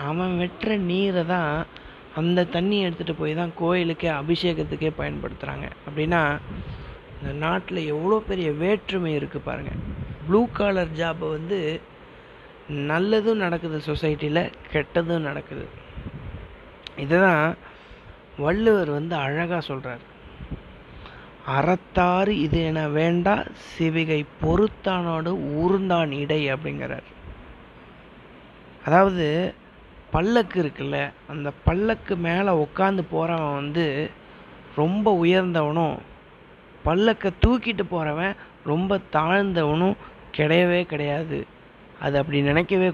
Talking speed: 90 wpm